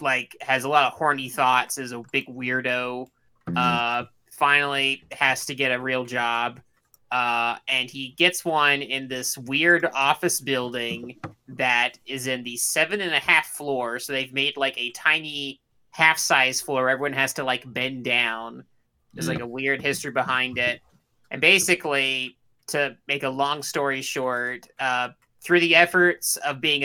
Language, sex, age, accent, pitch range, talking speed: English, male, 20-39, American, 125-140 Hz, 170 wpm